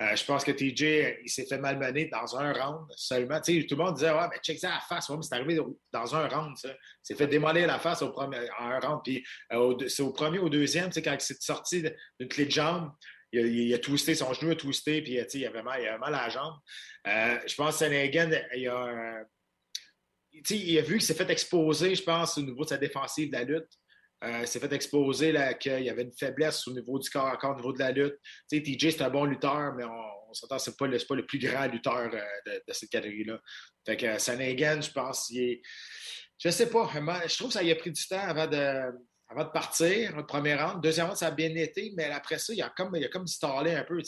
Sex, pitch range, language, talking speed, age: male, 135-165 Hz, French, 255 wpm, 30-49